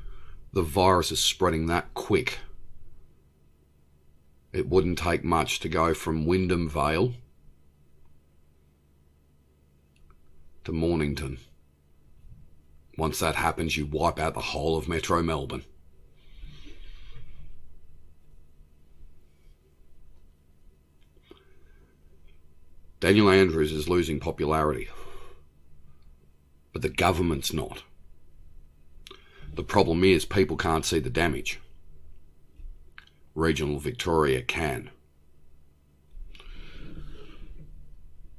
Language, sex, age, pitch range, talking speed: English, male, 40-59, 70-75 Hz, 75 wpm